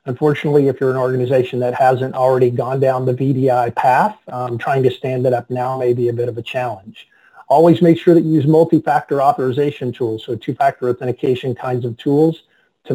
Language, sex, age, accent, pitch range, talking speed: English, male, 40-59, American, 125-145 Hz, 200 wpm